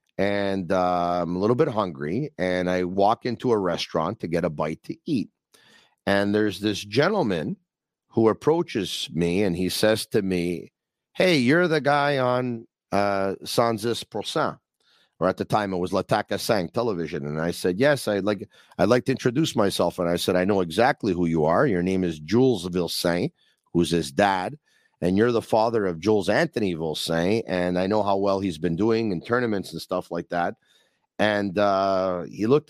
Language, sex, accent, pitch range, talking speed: English, male, American, 85-110 Hz, 190 wpm